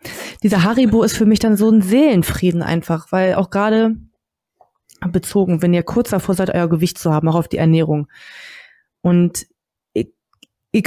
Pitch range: 170-210 Hz